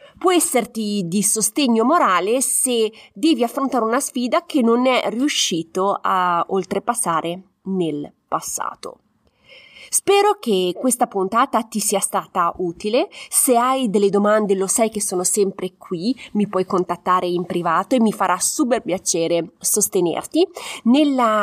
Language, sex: Italian, female